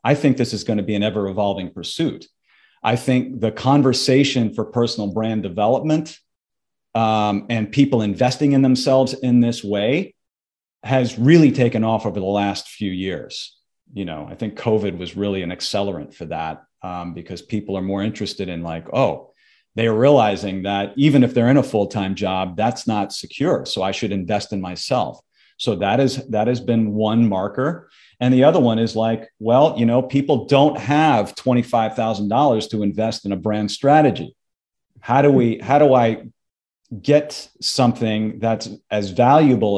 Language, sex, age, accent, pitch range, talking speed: English, male, 40-59, American, 100-125 Hz, 175 wpm